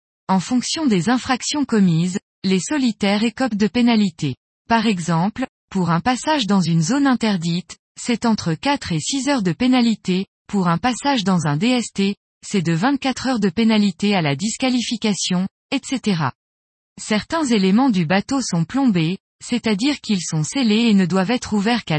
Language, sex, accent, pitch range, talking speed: French, female, French, 180-245 Hz, 160 wpm